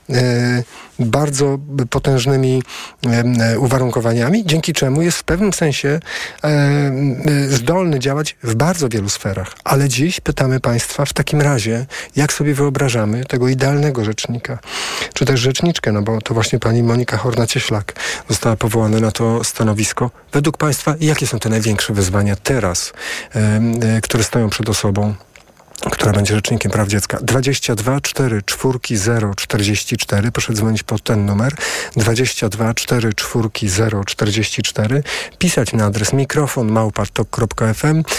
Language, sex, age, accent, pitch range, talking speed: Polish, male, 40-59, native, 110-140 Hz, 125 wpm